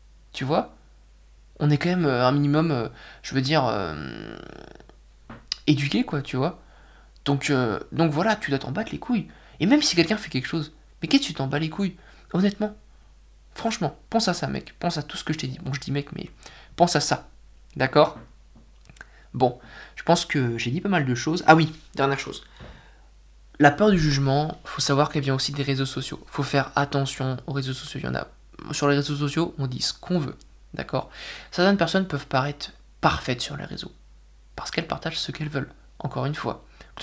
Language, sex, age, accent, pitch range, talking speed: French, male, 20-39, French, 135-165 Hz, 210 wpm